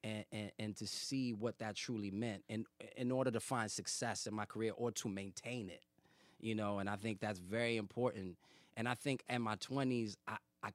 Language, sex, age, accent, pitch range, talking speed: English, male, 20-39, American, 95-120 Hz, 205 wpm